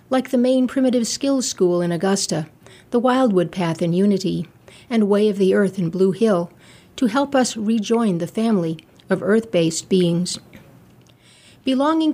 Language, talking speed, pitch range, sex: English, 155 wpm, 185-235 Hz, female